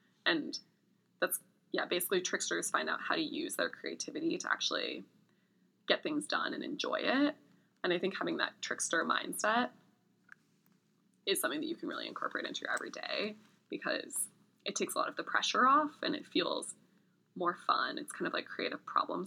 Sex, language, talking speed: female, English, 180 wpm